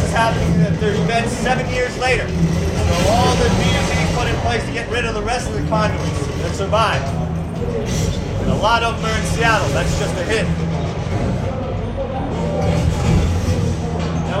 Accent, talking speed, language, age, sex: American, 165 wpm, English, 30-49, male